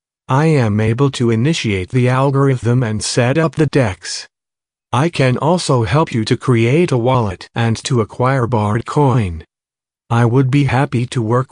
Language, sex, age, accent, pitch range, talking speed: English, male, 50-69, American, 115-140 Hz, 165 wpm